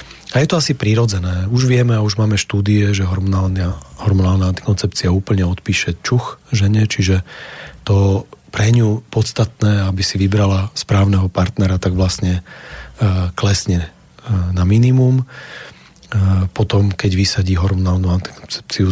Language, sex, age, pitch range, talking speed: Slovak, male, 30-49, 90-110 Hz, 120 wpm